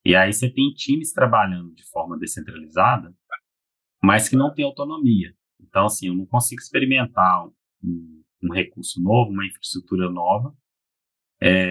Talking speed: 145 wpm